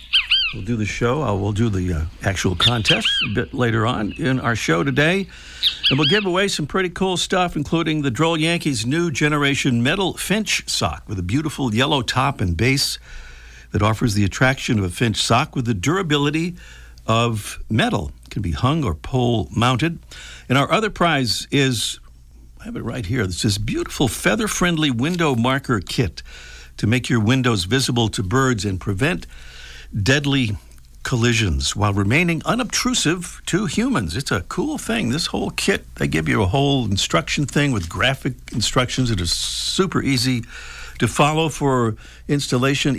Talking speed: 165 wpm